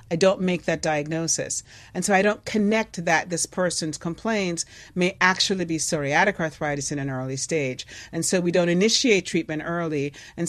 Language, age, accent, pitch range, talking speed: English, 40-59, American, 160-210 Hz, 175 wpm